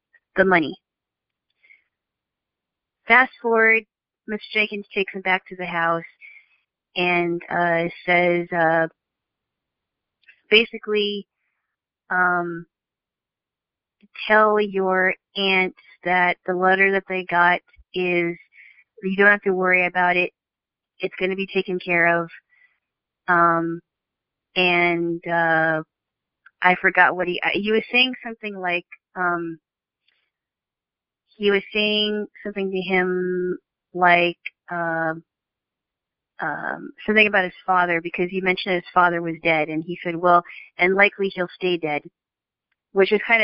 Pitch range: 175-205 Hz